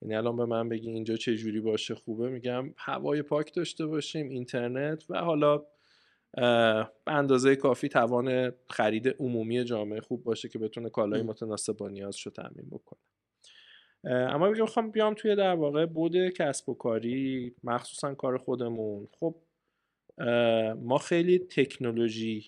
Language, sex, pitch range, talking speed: Persian, male, 110-135 Hz, 130 wpm